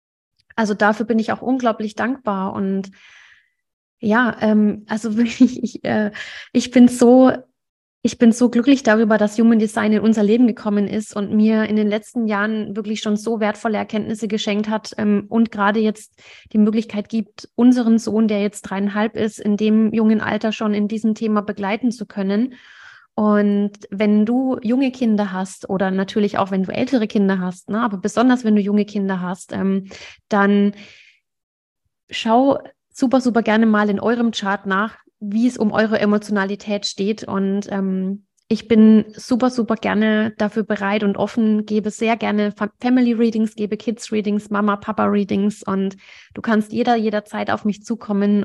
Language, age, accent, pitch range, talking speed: German, 30-49, German, 205-230 Hz, 160 wpm